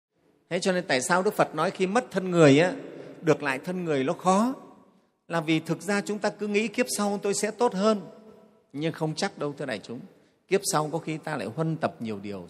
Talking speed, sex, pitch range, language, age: 240 wpm, male, 120-175 Hz, Vietnamese, 30-49